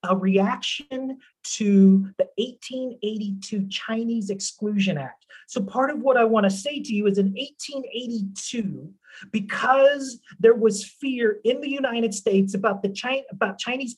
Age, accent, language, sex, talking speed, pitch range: 30-49, American, English, male, 145 wpm, 185-235 Hz